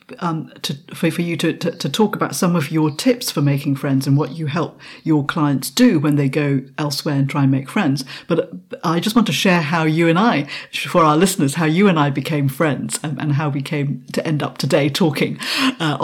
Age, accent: 50-69, British